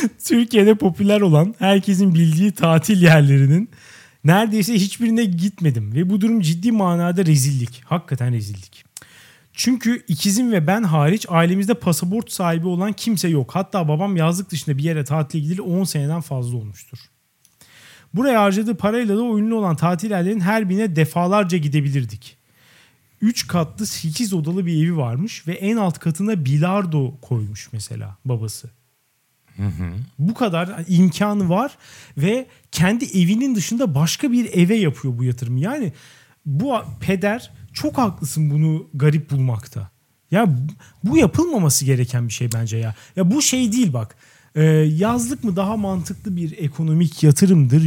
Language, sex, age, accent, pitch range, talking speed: Turkish, male, 40-59, native, 140-205 Hz, 140 wpm